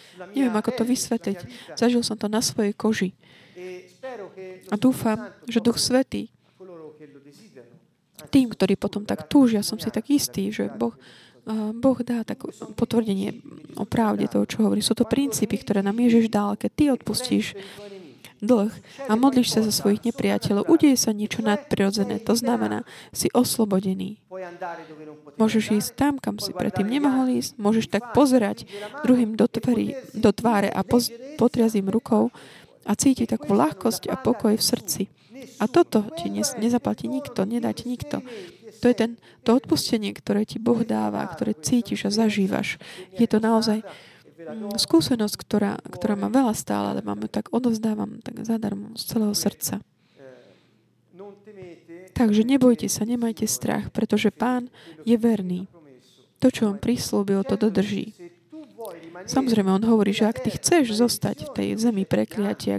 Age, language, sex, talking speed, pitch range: 20-39, Slovak, female, 145 wpm, 195-235 Hz